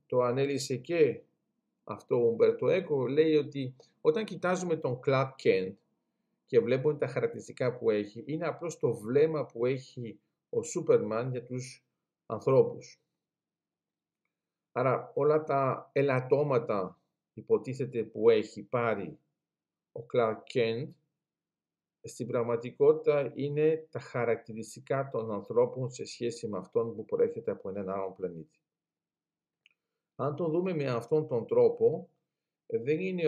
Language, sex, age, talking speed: Greek, male, 50-69, 120 wpm